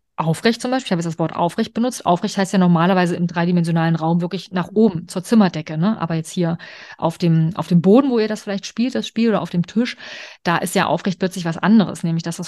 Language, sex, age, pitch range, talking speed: German, female, 30-49, 175-225 Hz, 250 wpm